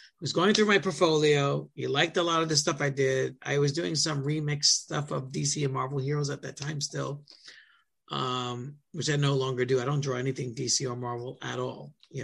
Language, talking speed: English, 225 wpm